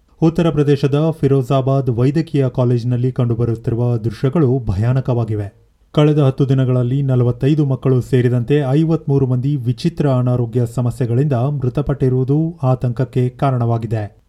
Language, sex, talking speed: Kannada, male, 95 wpm